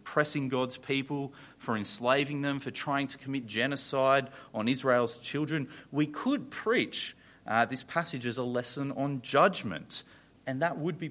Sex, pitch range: male, 120-150 Hz